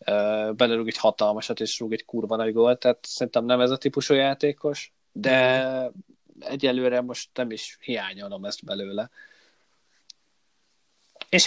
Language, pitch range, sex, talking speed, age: Hungarian, 115-150 Hz, male, 135 wpm, 30-49